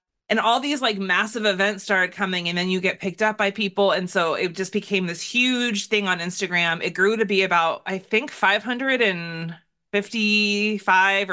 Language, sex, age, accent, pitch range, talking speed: English, female, 20-39, American, 180-220 Hz, 180 wpm